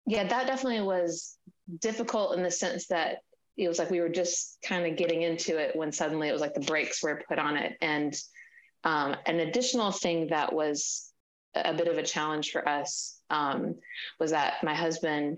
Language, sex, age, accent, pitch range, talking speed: English, female, 20-39, American, 150-180 Hz, 195 wpm